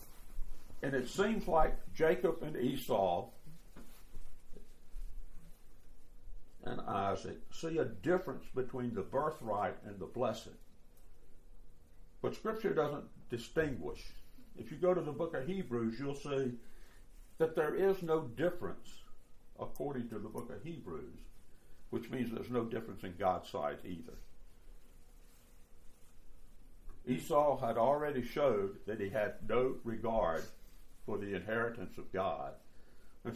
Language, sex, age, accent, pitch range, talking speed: English, male, 60-79, American, 80-130 Hz, 120 wpm